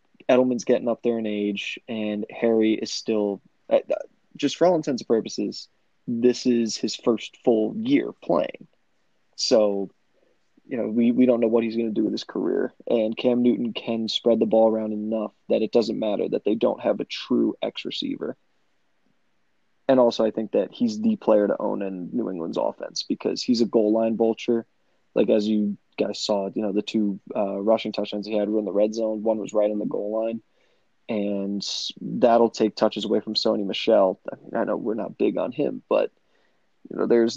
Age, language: 20-39, English